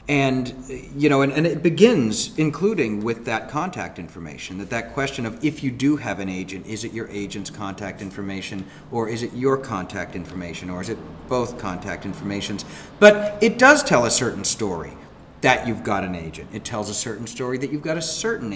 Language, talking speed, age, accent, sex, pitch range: English, 200 wpm, 40-59, American, male, 100-135 Hz